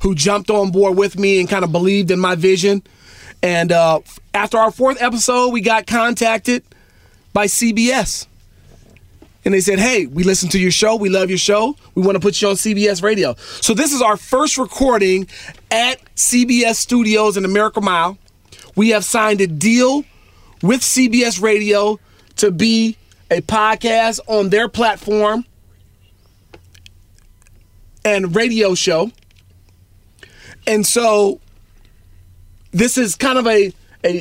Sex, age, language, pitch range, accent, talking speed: male, 30-49, English, 175-225 Hz, American, 145 wpm